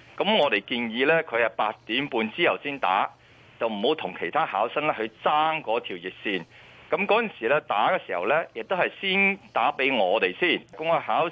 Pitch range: 115-170 Hz